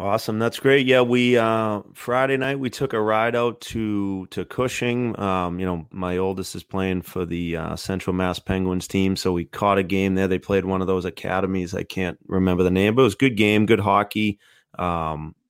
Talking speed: 215 wpm